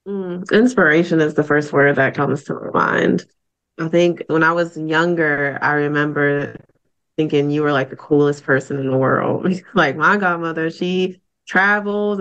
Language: English